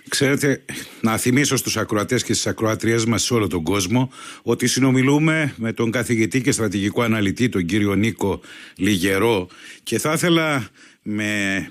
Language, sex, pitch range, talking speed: Greek, male, 105-130 Hz, 150 wpm